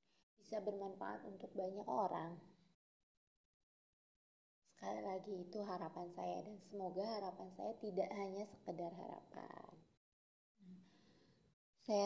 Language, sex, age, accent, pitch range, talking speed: Indonesian, female, 20-39, native, 180-210 Hz, 95 wpm